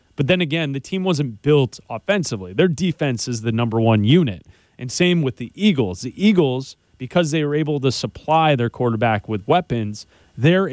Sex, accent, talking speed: male, American, 185 wpm